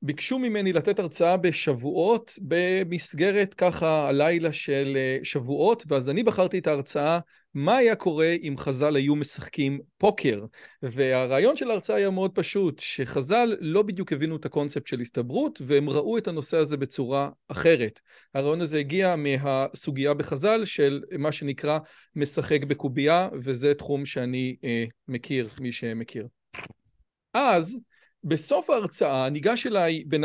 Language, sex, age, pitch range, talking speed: Hebrew, male, 40-59, 145-195 Hz, 135 wpm